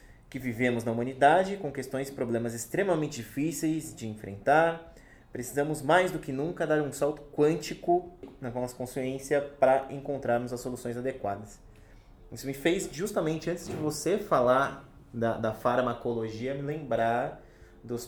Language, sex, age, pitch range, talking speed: Portuguese, male, 20-39, 110-135 Hz, 145 wpm